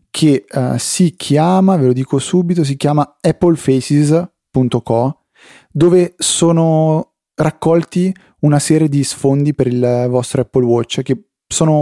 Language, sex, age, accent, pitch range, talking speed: Italian, male, 30-49, native, 125-160 Hz, 120 wpm